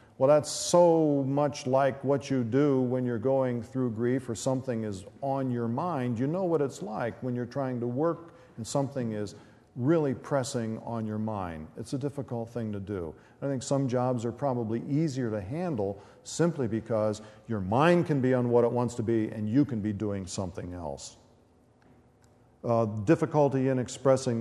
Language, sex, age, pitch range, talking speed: English, male, 50-69, 110-135 Hz, 185 wpm